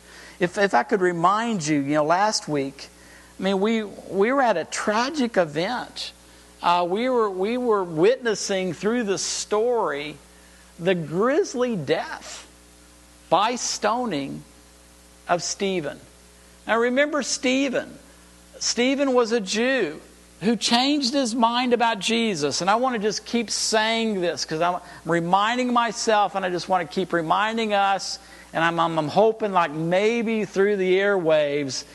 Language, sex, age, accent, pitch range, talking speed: English, male, 50-69, American, 140-230 Hz, 145 wpm